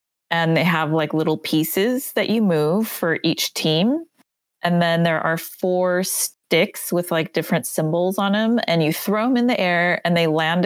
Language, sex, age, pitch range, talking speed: English, female, 30-49, 155-190 Hz, 190 wpm